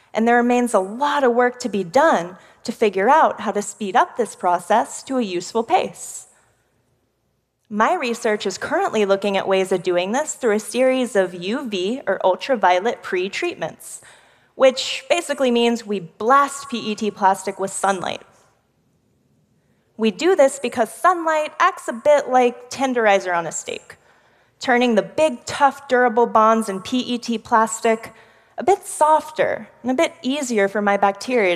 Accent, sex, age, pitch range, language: American, female, 20-39, 205-280 Hz, Korean